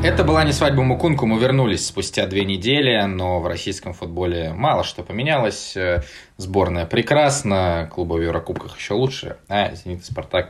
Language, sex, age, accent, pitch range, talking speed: Russian, male, 20-39, native, 85-110 Hz, 160 wpm